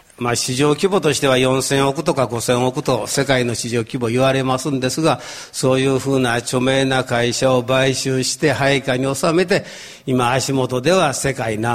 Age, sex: 60-79, male